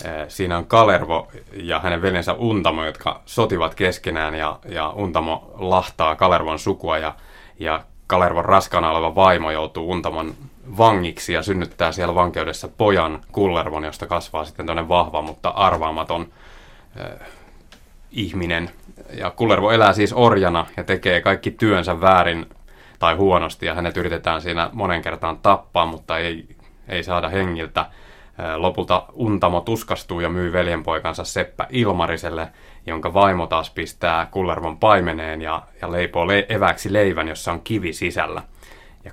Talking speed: 130 wpm